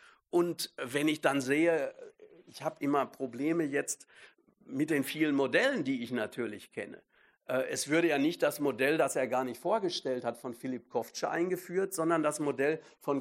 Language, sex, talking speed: German, male, 175 wpm